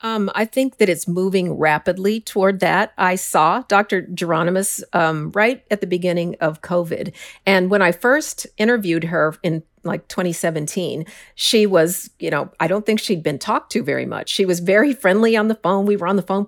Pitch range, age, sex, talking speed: 170-205 Hz, 50-69, female, 195 wpm